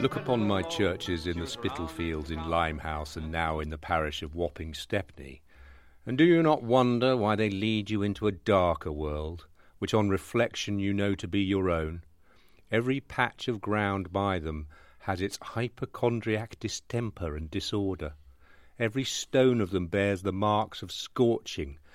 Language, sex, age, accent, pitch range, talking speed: English, male, 50-69, British, 85-110 Hz, 165 wpm